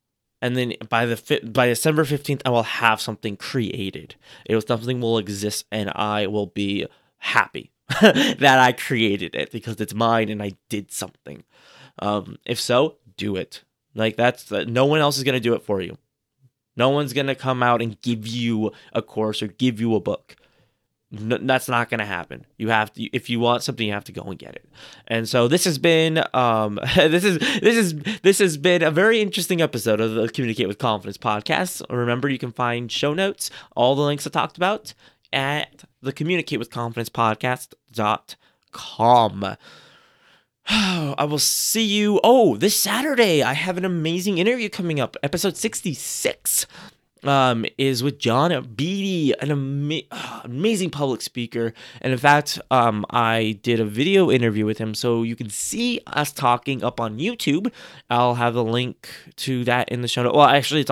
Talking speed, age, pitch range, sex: 185 wpm, 20-39, 110-150 Hz, male